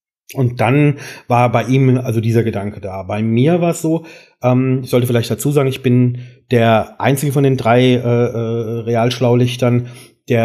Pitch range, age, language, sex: 120-140 Hz, 40-59, German, male